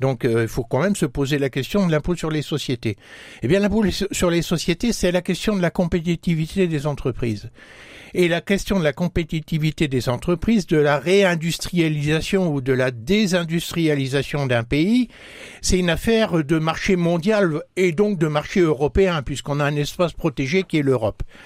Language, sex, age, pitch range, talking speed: French, male, 60-79, 135-185 Hz, 180 wpm